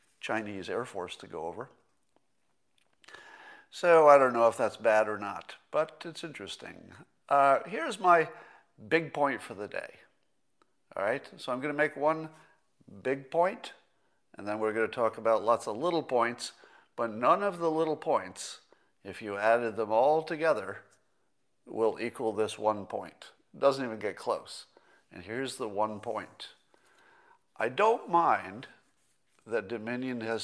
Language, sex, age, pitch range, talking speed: English, male, 50-69, 110-155 Hz, 160 wpm